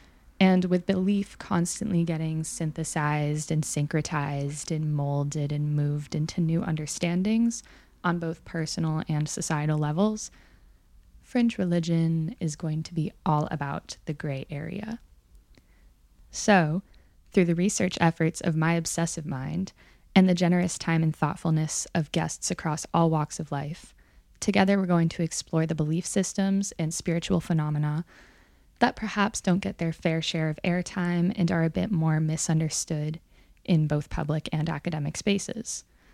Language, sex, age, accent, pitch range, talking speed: English, female, 10-29, American, 155-190 Hz, 145 wpm